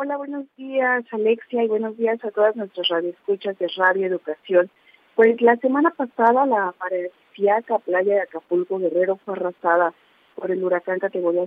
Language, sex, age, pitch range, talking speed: Spanish, female, 40-59, 190-240 Hz, 155 wpm